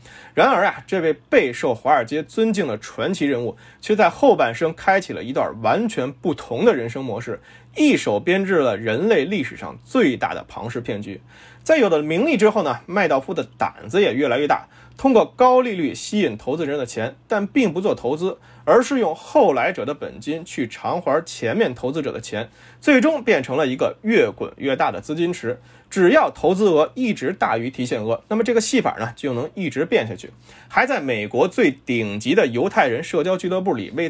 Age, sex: 20-39, male